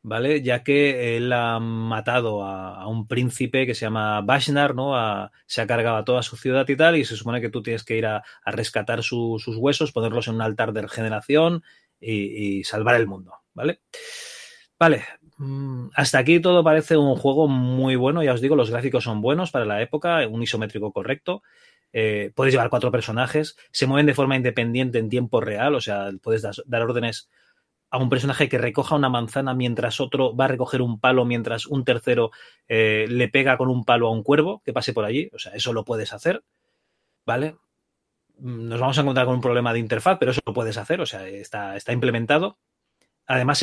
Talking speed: 205 wpm